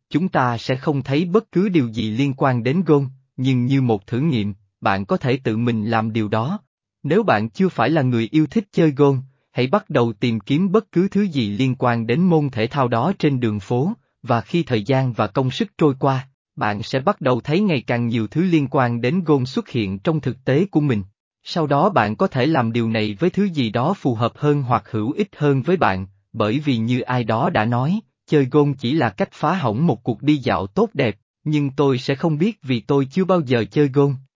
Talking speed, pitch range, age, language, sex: 240 wpm, 115-155 Hz, 20-39, Vietnamese, male